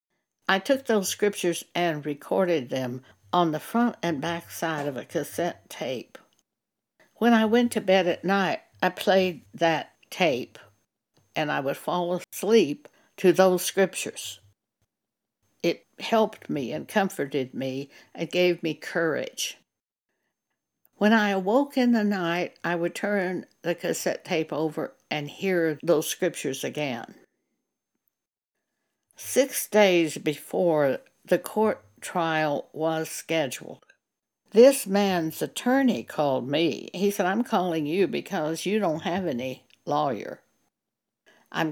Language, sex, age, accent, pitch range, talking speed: English, female, 60-79, American, 160-210 Hz, 130 wpm